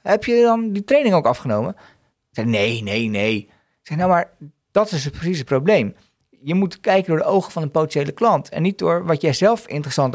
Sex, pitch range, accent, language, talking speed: male, 120-160 Hz, Dutch, Dutch, 230 wpm